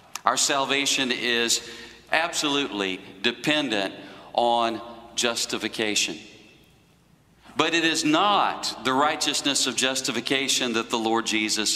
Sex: male